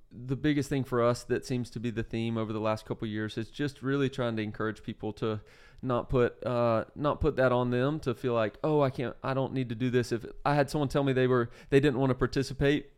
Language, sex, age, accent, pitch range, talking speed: English, male, 30-49, American, 120-135 Hz, 270 wpm